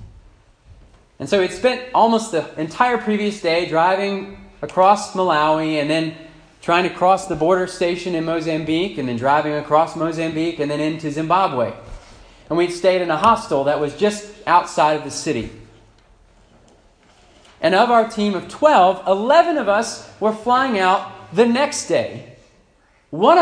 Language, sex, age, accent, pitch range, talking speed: English, male, 30-49, American, 130-185 Hz, 155 wpm